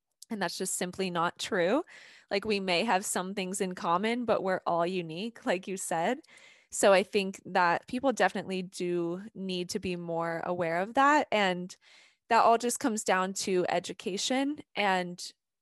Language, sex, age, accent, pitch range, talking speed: English, female, 20-39, American, 175-205 Hz, 170 wpm